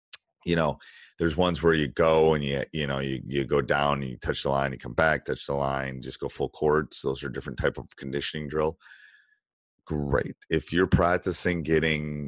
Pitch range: 70-85 Hz